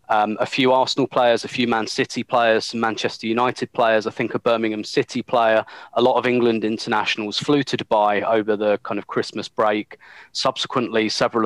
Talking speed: 190 wpm